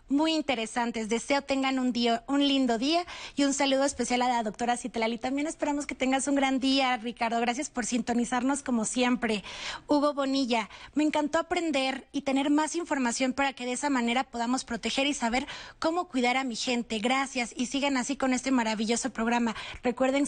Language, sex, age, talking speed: Spanish, female, 30-49, 185 wpm